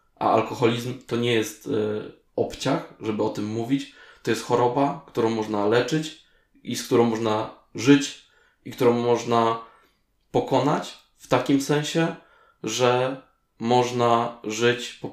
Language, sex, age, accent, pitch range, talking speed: Polish, male, 20-39, native, 100-130 Hz, 125 wpm